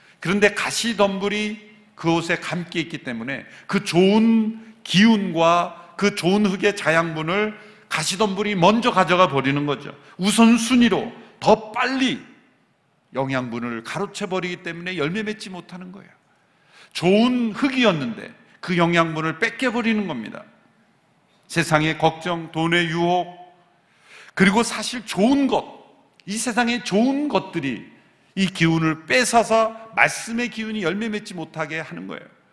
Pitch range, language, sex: 160-215 Hz, Korean, male